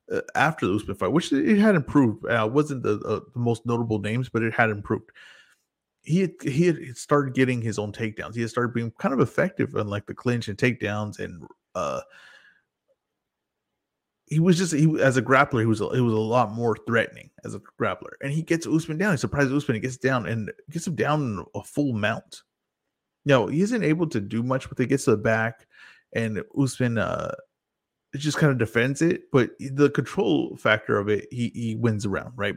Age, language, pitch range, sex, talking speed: 30-49, English, 110-140 Hz, male, 210 wpm